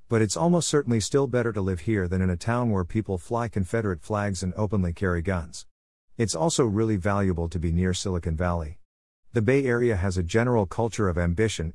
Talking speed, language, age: 205 wpm, English, 50-69